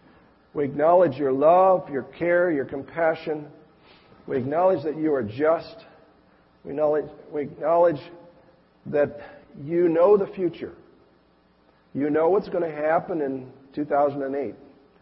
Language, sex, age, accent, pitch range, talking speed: English, male, 50-69, American, 130-160 Hz, 120 wpm